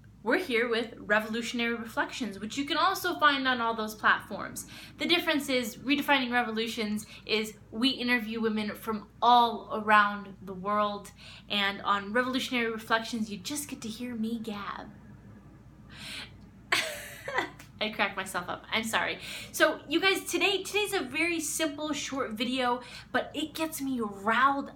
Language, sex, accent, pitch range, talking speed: English, female, American, 210-250 Hz, 145 wpm